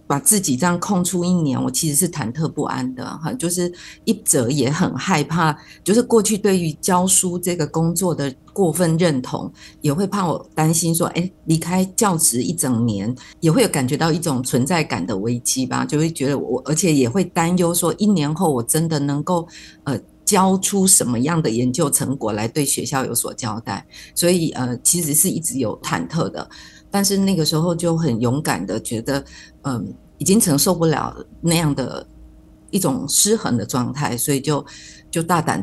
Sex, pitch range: female, 130-175 Hz